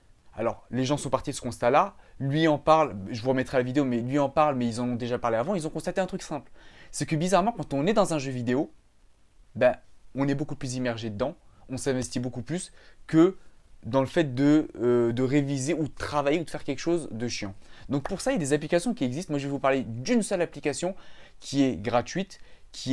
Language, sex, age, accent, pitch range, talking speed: French, male, 20-39, French, 125-160 Hz, 245 wpm